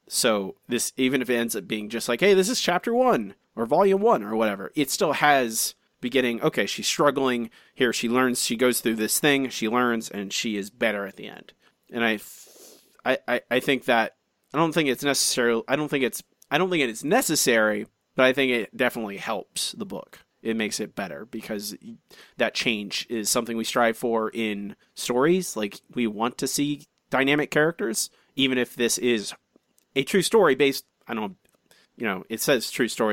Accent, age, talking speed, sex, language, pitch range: American, 30-49, 195 wpm, male, English, 110-140 Hz